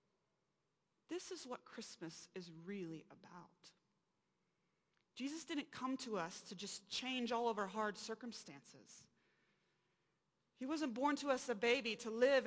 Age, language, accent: 30-49, English, American